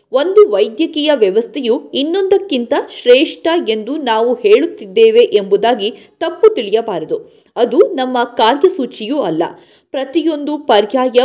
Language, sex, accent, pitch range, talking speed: Kannada, female, native, 245-415 Hz, 85 wpm